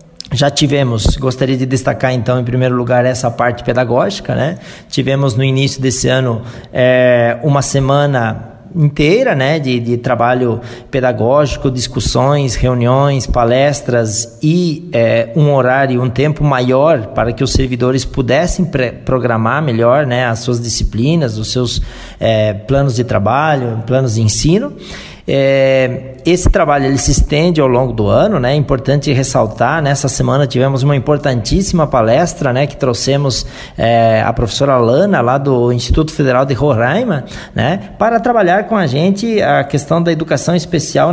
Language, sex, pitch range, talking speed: Portuguese, male, 125-160 Hz, 140 wpm